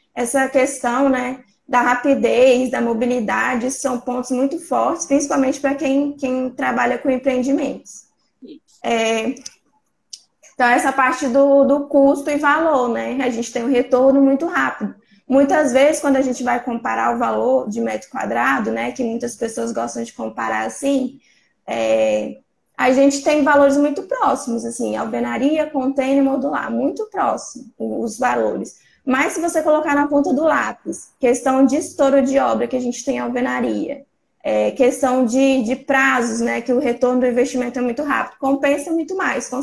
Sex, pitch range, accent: female, 245-280 Hz, Brazilian